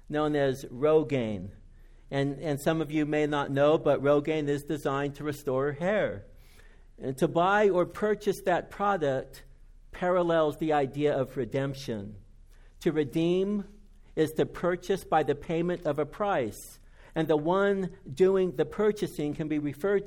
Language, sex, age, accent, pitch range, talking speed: English, male, 60-79, American, 140-175 Hz, 150 wpm